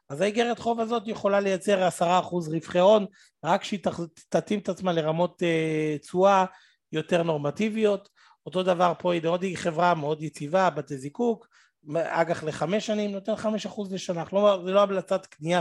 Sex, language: male, Hebrew